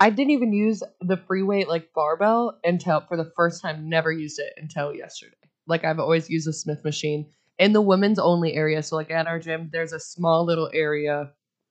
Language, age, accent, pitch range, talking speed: English, 20-39, American, 155-170 Hz, 210 wpm